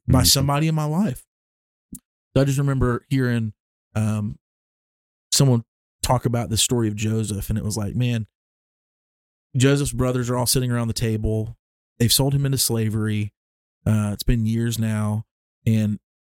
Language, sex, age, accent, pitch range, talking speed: English, male, 30-49, American, 110-130 Hz, 150 wpm